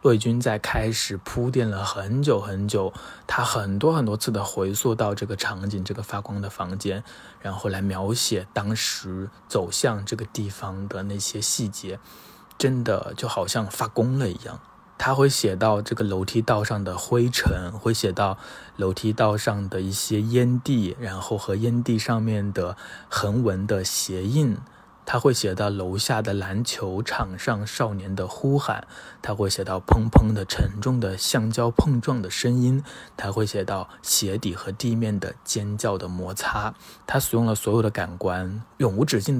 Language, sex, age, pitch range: Chinese, male, 20-39, 100-120 Hz